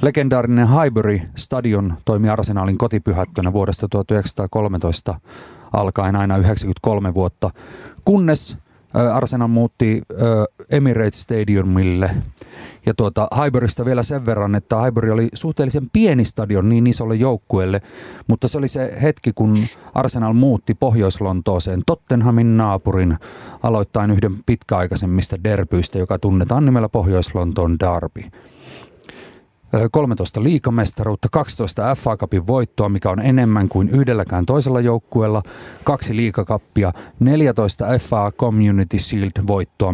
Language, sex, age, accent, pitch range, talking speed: Finnish, male, 30-49, native, 95-120 Hz, 105 wpm